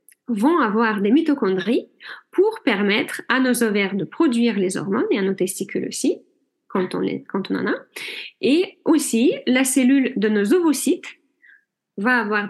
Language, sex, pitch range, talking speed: French, female, 205-275 Hz, 165 wpm